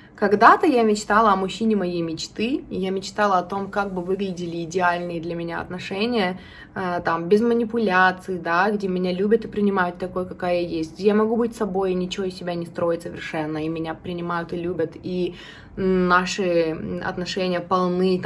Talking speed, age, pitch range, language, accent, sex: 170 wpm, 20-39, 180-230 Hz, Russian, native, female